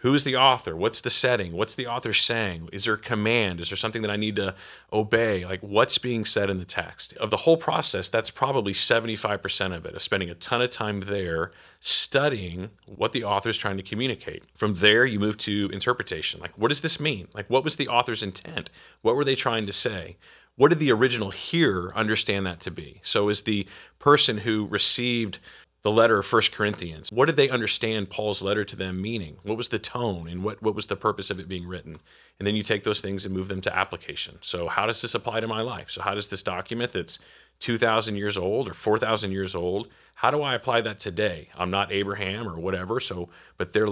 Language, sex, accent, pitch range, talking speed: English, male, American, 95-115 Hz, 225 wpm